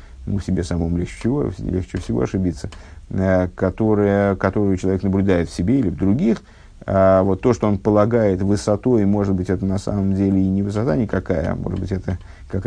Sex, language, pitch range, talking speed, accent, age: male, Russian, 95-115 Hz, 180 wpm, native, 50-69